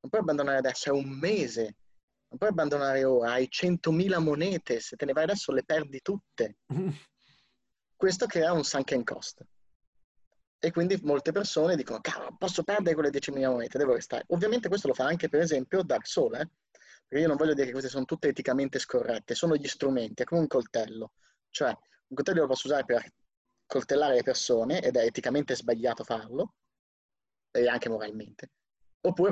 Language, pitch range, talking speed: Italian, 120-160 Hz, 180 wpm